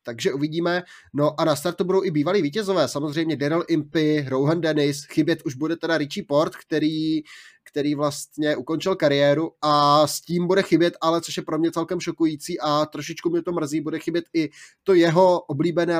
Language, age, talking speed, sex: Czech, 20-39, 185 wpm, male